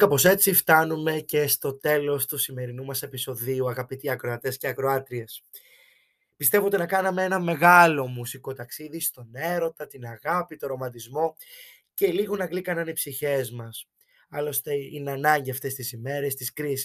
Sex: male